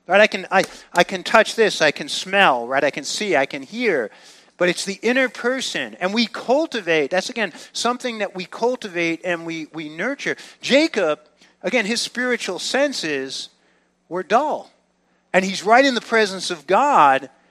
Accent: American